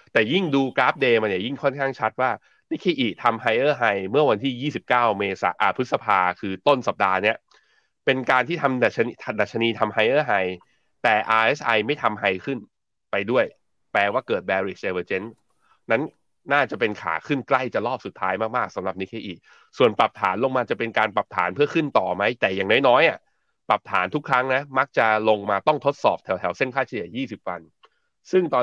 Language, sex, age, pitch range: Thai, male, 20-39, 105-135 Hz